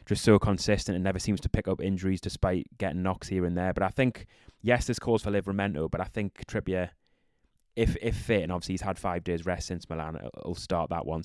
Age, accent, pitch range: 20-39, British, 90-105 Hz